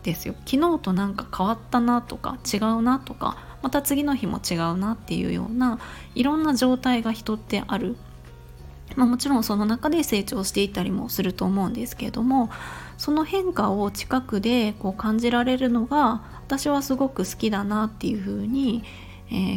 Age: 20-39